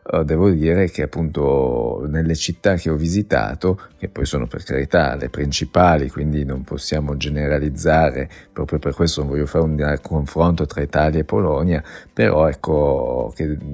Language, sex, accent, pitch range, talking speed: Italian, male, native, 75-95 Hz, 155 wpm